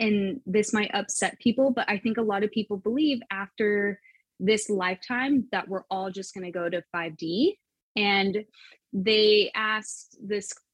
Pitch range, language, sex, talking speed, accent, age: 190-245 Hz, English, female, 160 wpm, American, 20-39